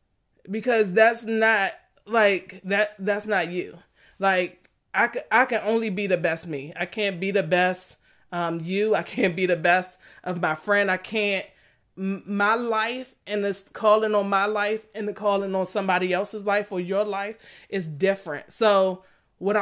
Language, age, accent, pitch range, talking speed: English, 20-39, American, 180-210 Hz, 175 wpm